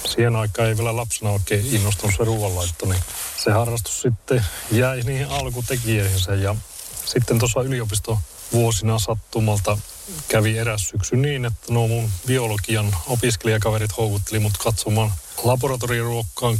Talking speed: 120 wpm